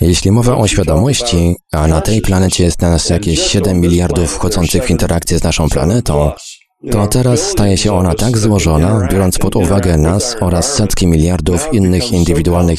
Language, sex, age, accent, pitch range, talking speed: Polish, male, 30-49, native, 85-105 Hz, 165 wpm